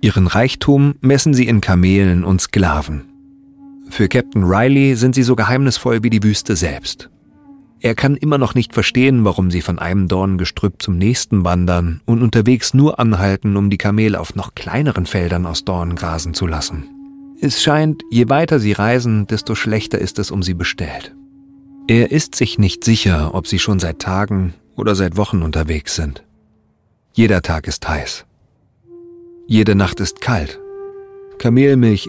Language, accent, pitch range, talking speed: German, German, 90-125 Hz, 165 wpm